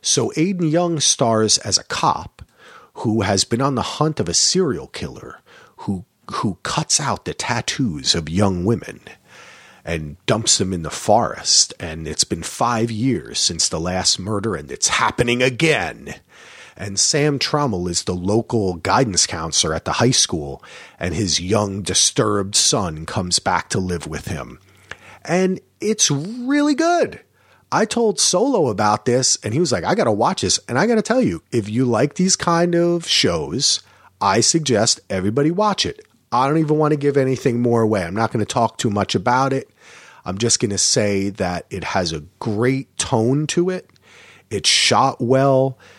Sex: male